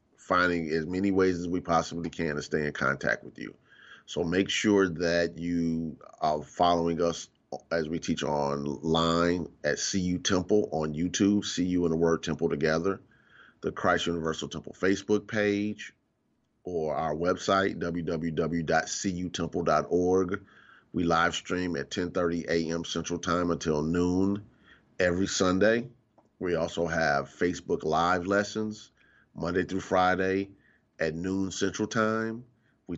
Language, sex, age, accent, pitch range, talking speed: English, male, 30-49, American, 85-95 Hz, 135 wpm